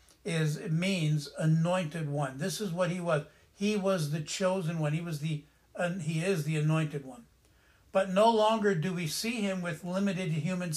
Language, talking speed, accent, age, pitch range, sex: English, 190 wpm, American, 60-79, 155-195 Hz, male